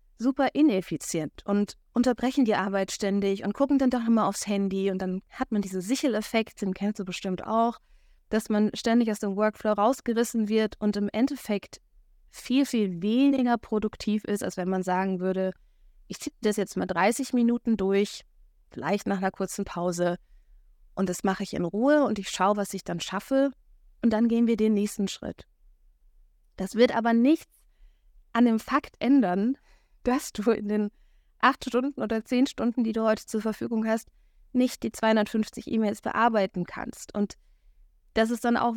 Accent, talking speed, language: German, 175 wpm, German